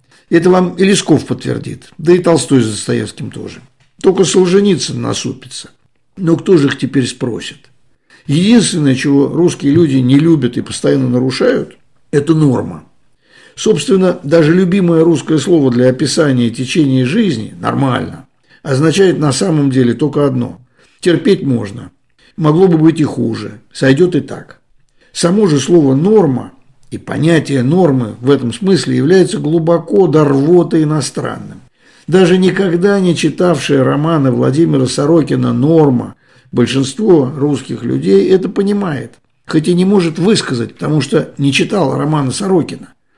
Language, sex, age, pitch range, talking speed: Russian, male, 60-79, 130-170 Hz, 130 wpm